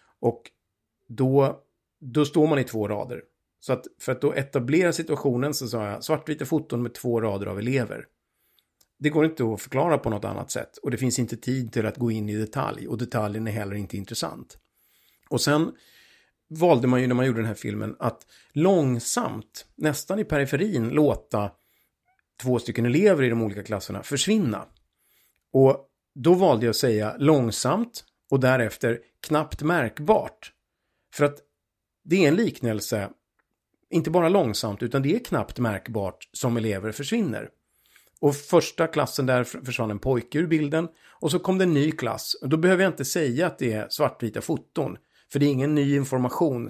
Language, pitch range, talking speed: Swedish, 115-150 Hz, 175 wpm